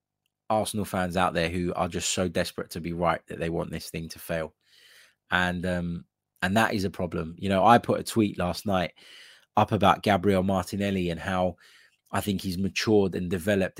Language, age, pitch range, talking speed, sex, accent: English, 20-39, 90-105 Hz, 200 wpm, male, British